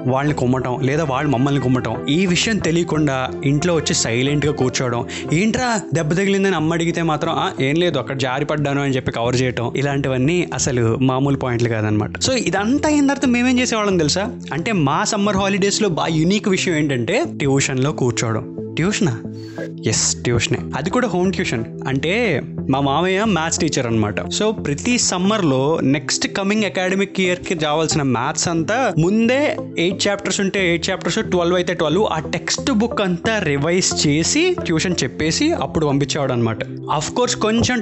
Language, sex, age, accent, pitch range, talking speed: Telugu, male, 20-39, native, 140-195 Hz, 150 wpm